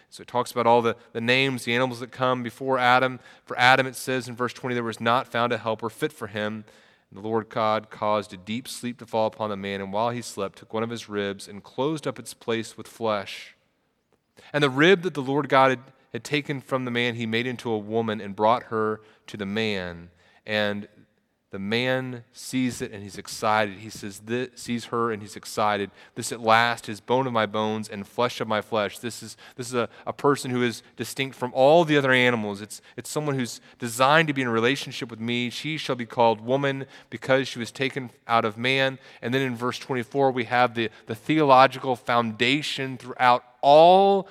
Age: 30-49